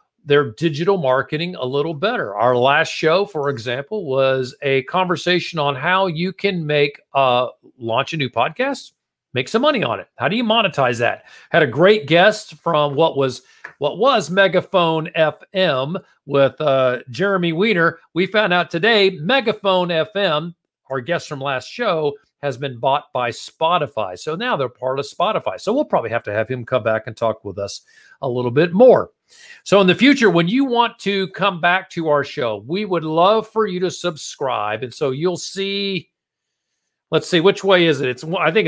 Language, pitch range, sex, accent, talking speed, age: English, 145-200 Hz, male, American, 190 wpm, 50-69